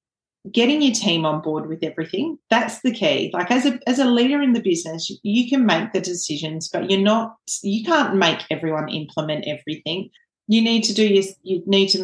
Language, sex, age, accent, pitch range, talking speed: English, female, 30-49, Australian, 165-200 Hz, 190 wpm